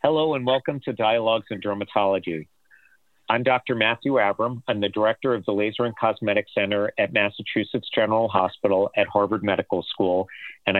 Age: 50-69